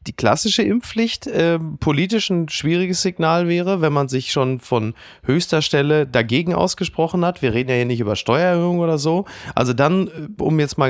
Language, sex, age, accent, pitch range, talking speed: German, male, 30-49, German, 120-165 Hz, 180 wpm